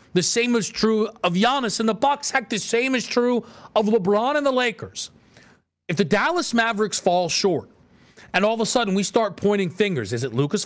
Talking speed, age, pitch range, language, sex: 210 wpm, 40-59, 185-240 Hz, English, male